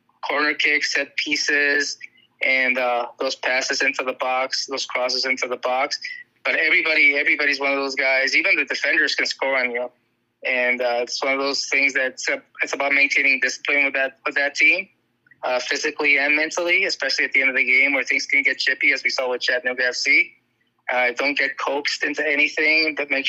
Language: English